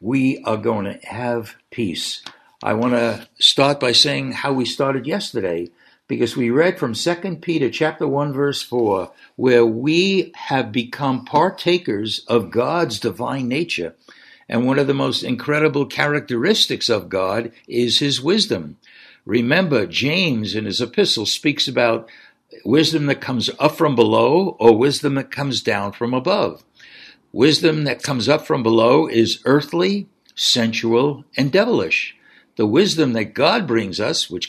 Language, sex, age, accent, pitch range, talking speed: English, male, 60-79, American, 115-150 Hz, 150 wpm